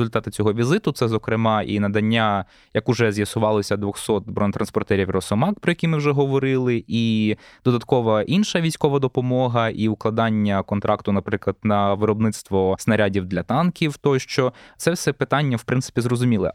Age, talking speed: 20-39, 145 wpm